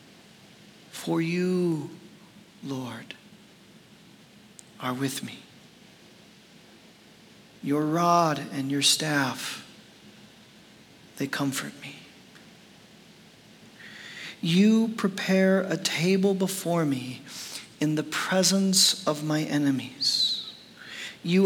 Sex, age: male, 40-59